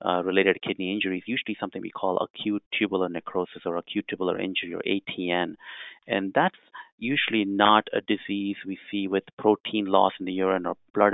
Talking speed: 190 wpm